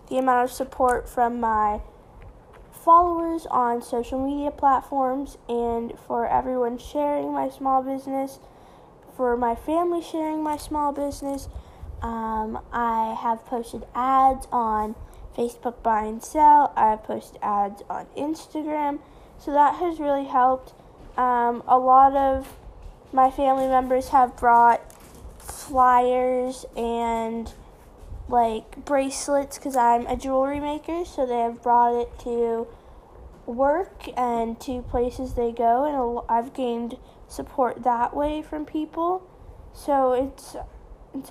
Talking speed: 125 wpm